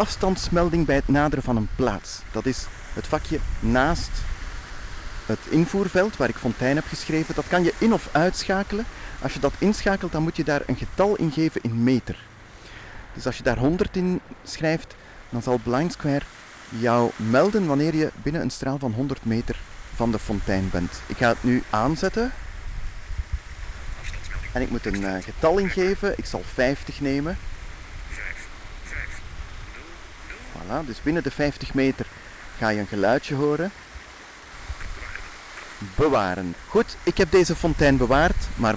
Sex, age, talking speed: male, 30-49, 150 wpm